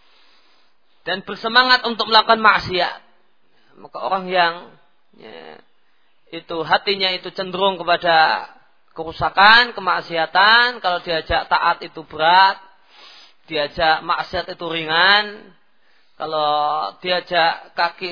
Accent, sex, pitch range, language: native, male, 165-205 Hz, Indonesian